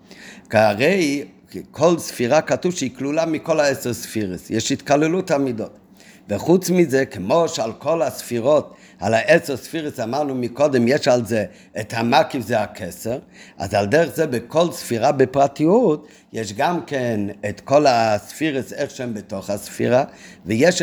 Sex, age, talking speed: male, 50-69, 140 wpm